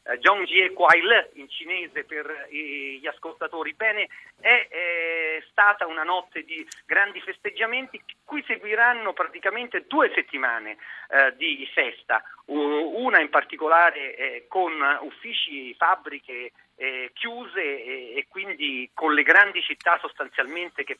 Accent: native